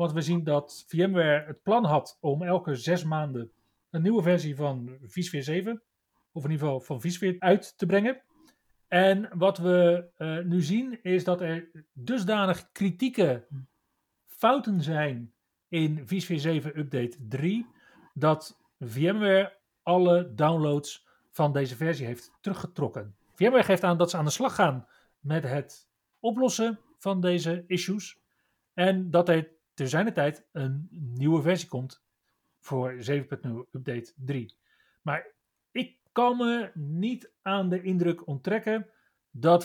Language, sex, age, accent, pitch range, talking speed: Dutch, male, 40-59, Dutch, 140-185 Hz, 140 wpm